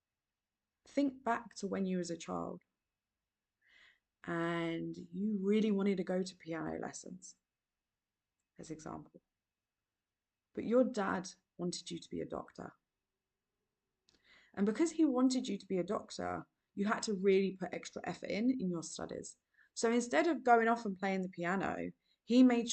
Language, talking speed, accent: English, 155 wpm, British